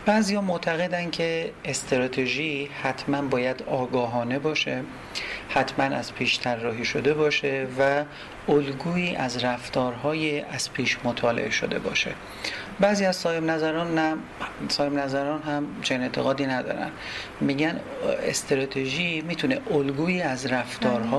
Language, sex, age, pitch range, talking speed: Persian, male, 40-59, 125-155 Hz, 115 wpm